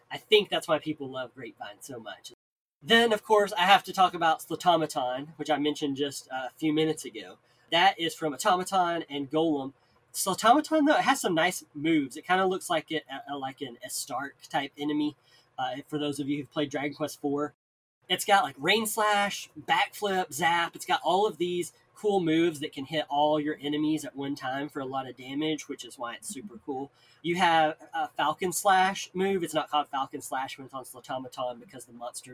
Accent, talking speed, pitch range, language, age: American, 210 wpm, 135-170 Hz, English, 20-39